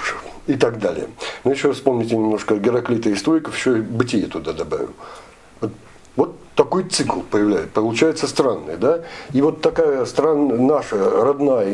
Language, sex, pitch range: English, male, 110-150 Hz